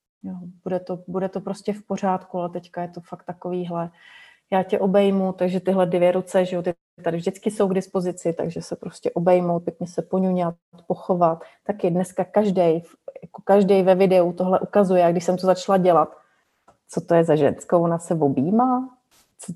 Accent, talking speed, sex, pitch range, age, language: native, 185 wpm, female, 180-225 Hz, 30-49, Czech